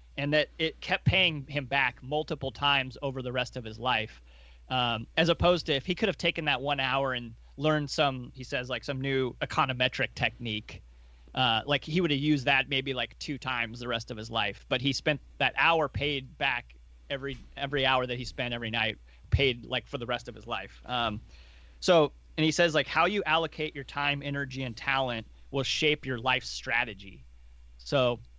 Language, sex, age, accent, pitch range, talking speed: English, male, 30-49, American, 110-145 Hz, 205 wpm